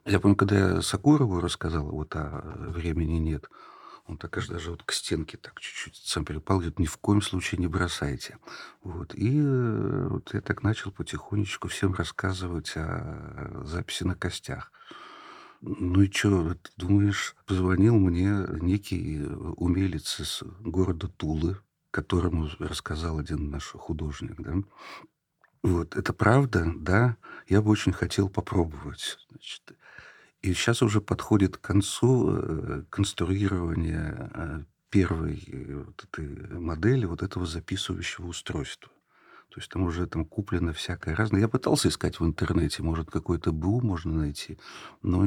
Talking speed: 140 wpm